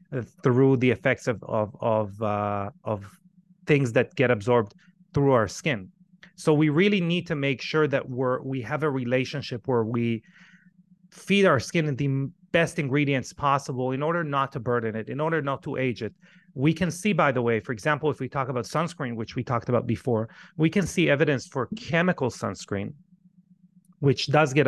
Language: English